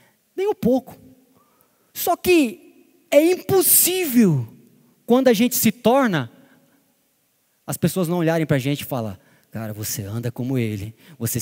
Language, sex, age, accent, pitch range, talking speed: Portuguese, male, 20-39, Brazilian, 195-275 Hz, 140 wpm